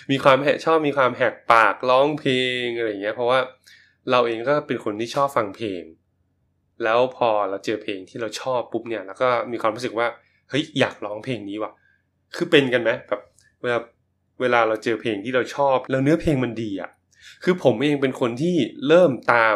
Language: Thai